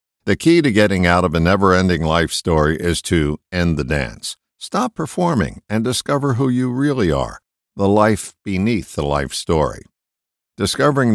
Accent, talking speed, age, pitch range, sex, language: American, 160 wpm, 60-79, 80-120 Hz, male, English